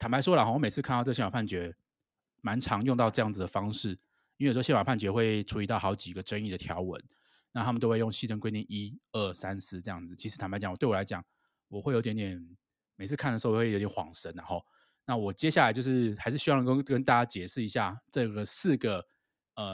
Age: 20-39